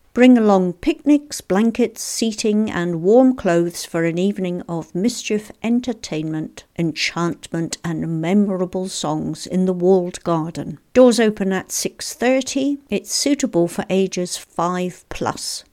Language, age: English, 60-79